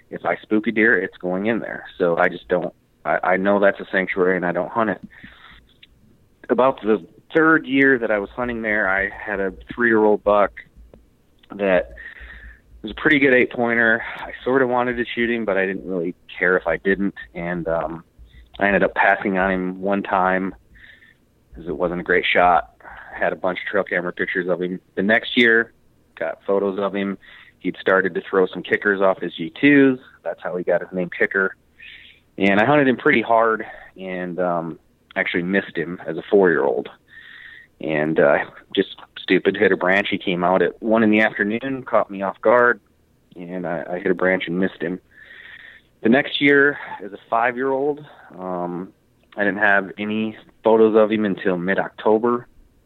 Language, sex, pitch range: English, male, 90-115 Hz